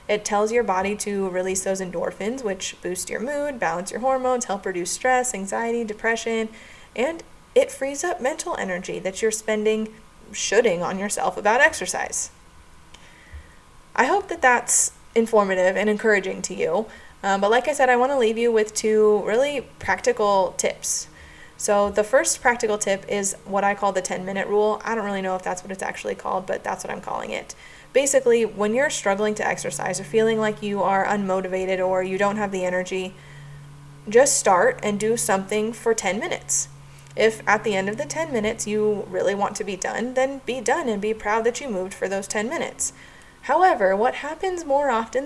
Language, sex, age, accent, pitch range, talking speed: English, female, 20-39, American, 190-240 Hz, 190 wpm